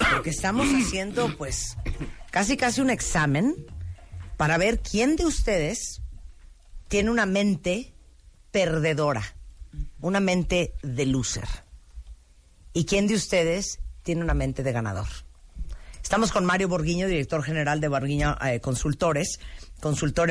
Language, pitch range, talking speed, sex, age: Spanish, 125-170 Hz, 120 wpm, female, 40-59